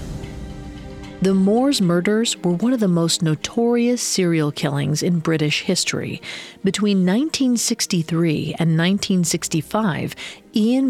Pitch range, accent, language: 160-220 Hz, American, English